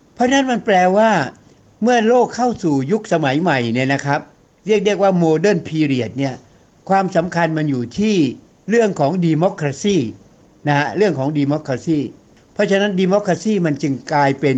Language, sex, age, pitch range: Thai, male, 60-79, 140-190 Hz